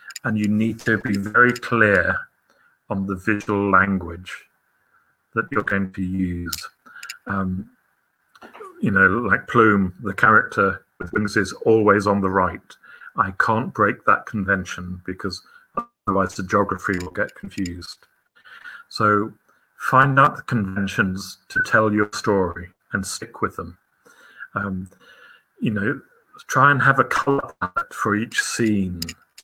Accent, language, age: British, English, 40-59